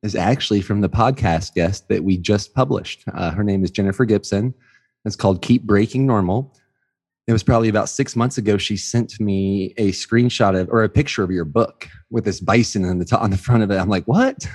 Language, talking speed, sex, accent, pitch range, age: English, 215 wpm, male, American, 95-120 Hz, 20-39